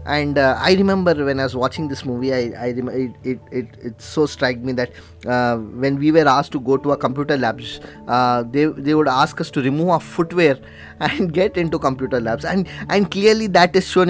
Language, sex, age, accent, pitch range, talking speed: Telugu, male, 20-39, native, 125-155 Hz, 225 wpm